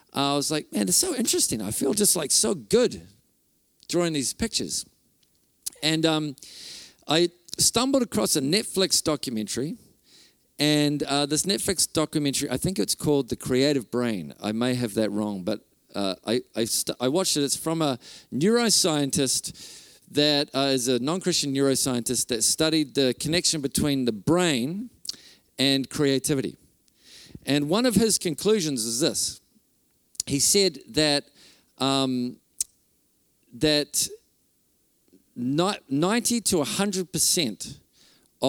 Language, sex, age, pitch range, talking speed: English, male, 50-69, 130-170 Hz, 130 wpm